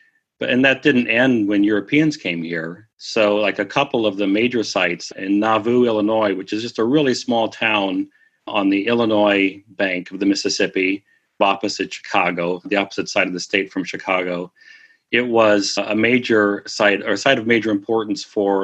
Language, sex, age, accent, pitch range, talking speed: English, male, 40-59, American, 95-115 Hz, 175 wpm